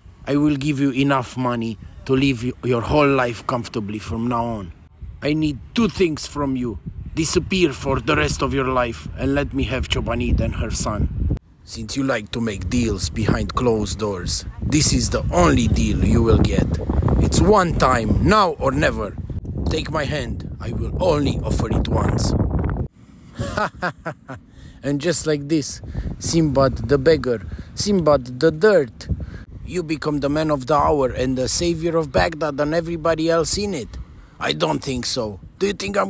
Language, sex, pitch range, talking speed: English, male, 105-145 Hz, 170 wpm